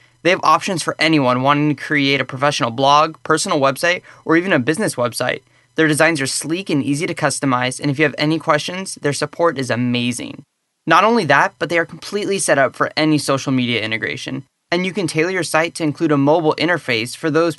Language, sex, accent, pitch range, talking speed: English, male, American, 135-170 Hz, 215 wpm